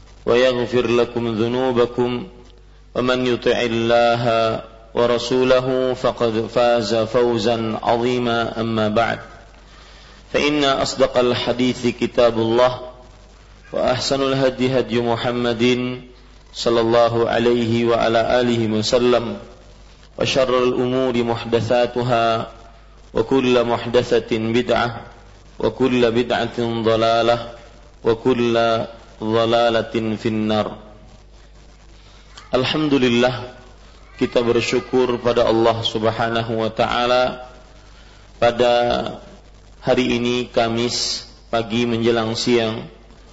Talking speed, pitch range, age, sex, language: 75 wpm, 115-125 Hz, 40-59, male, Malay